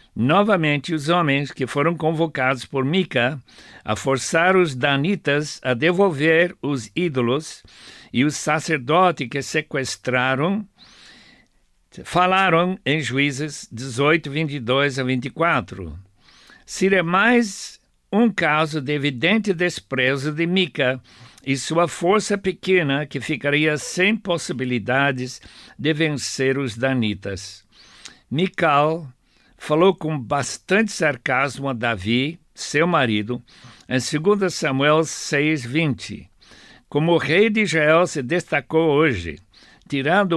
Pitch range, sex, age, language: 125-165 Hz, male, 60-79, Portuguese